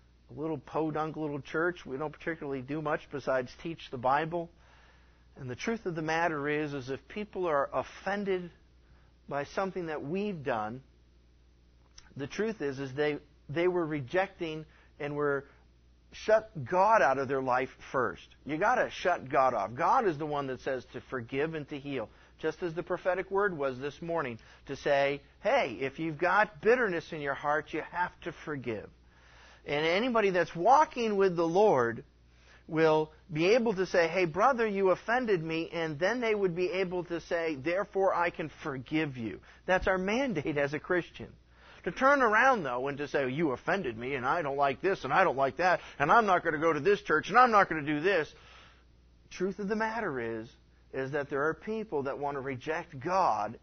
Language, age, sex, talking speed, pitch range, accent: English, 50-69, male, 195 wpm, 130-185 Hz, American